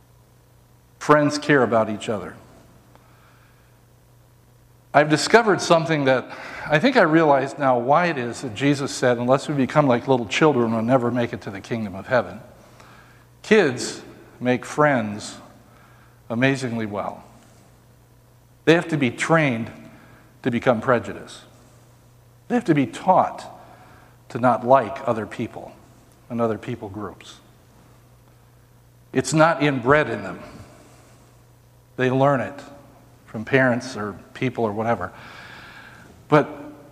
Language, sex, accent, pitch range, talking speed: English, male, American, 120-150 Hz, 125 wpm